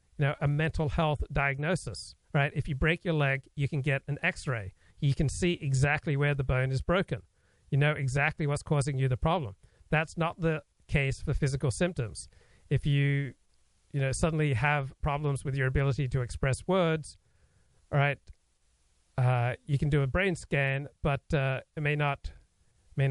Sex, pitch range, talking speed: male, 130-155 Hz, 175 wpm